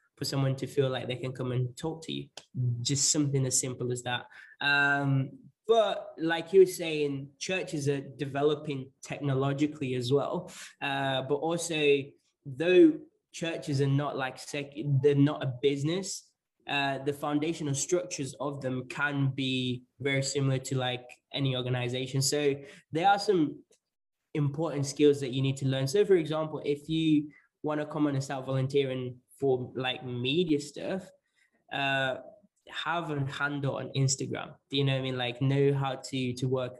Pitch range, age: 130-160 Hz, 20-39